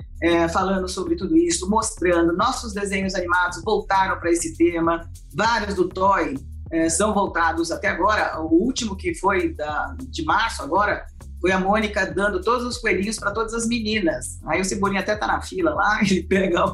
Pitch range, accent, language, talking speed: 165-215 Hz, Brazilian, Portuguese, 180 wpm